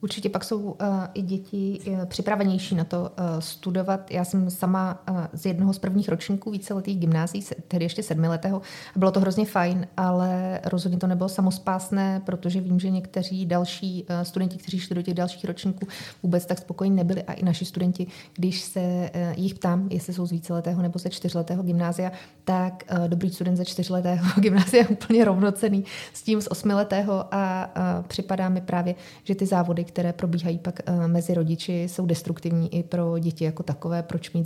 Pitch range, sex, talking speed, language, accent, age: 170-190 Hz, female, 185 wpm, Czech, native, 30-49